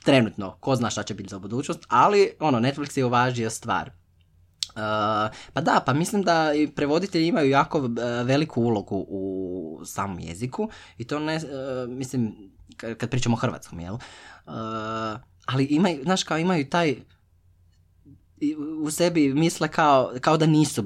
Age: 20-39